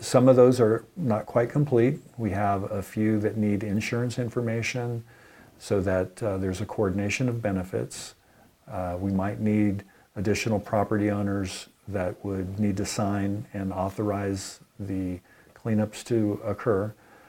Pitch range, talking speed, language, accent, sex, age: 100-115 Hz, 140 wpm, English, American, male, 50-69